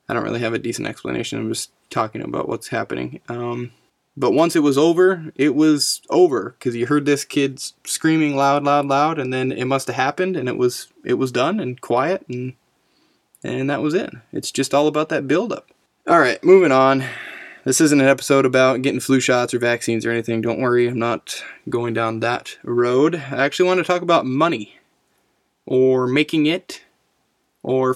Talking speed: 195 wpm